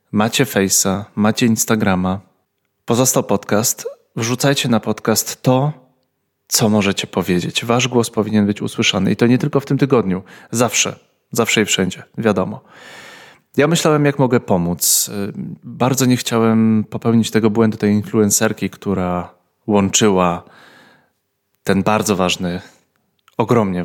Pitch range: 100-130 Hz